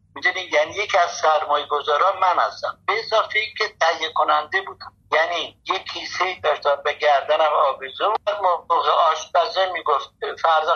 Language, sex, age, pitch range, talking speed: Persian, male, 60-79, 145-200 Hz, 140 wpm